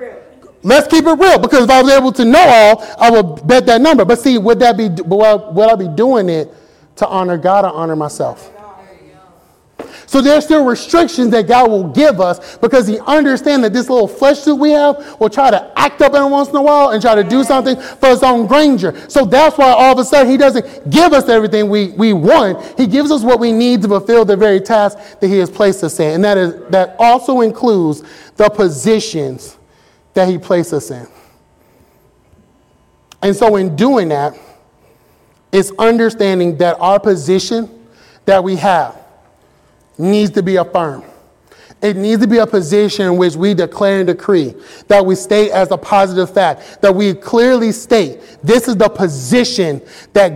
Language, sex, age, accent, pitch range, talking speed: English, male, 30-49, American, 190-255 Hz, 190 wpm